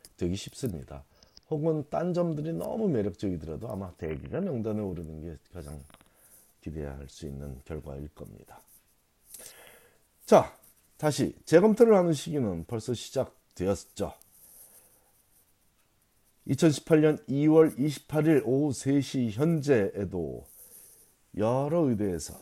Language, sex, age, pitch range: Korean, male, 40-59, 95-145 Hz